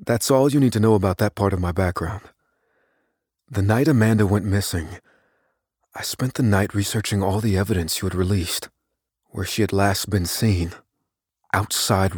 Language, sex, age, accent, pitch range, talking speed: English, male, 40-59, American, 95-115 Hz, 170 wpm